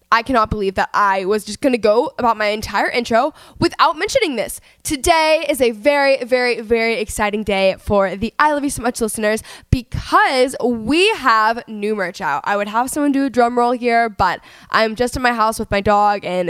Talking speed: 210 wpm